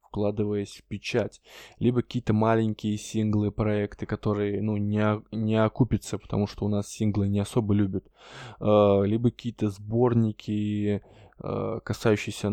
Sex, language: male, Russian